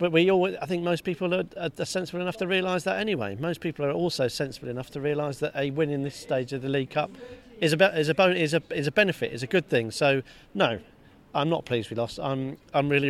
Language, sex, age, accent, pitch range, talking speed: English, male, 40-59, British, 130-155 Hz, 265 wpm